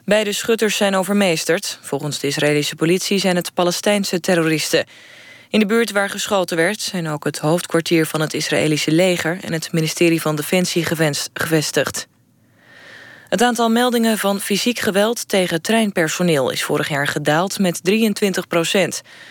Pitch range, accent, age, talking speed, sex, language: 160-195 Hz, Dutch, 20-39, 145 wpm, female, Dutch